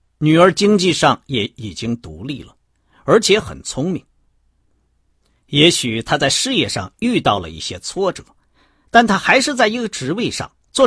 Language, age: Chinese, 50-69